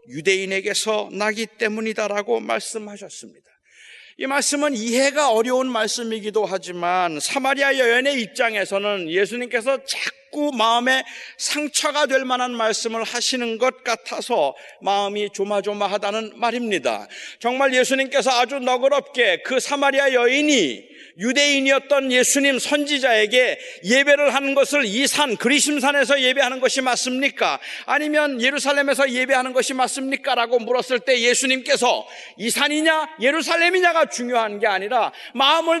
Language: Korean